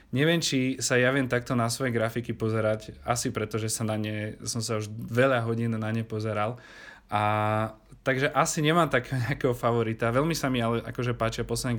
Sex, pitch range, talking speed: male, 110-125 Hz, 180 wpm